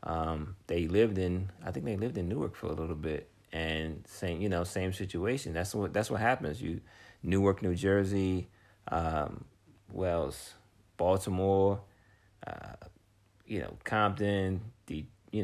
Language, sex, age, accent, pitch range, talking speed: English, male, 30-49, American, 85-100 Hz, 145 wpm